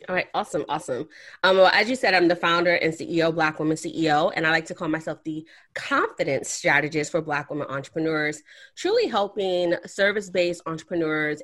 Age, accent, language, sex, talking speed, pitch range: 30-49, American, English, female, 175 wpm, 155-180 Hz